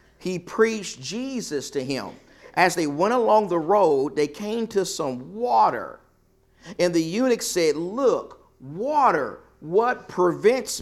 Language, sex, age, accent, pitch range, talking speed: English, male, 50-69, American, 155-240 Hz, 135 wpm